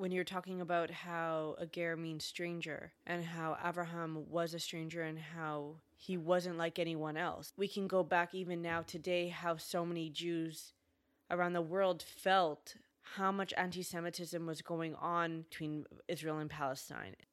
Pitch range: 170-200 Hz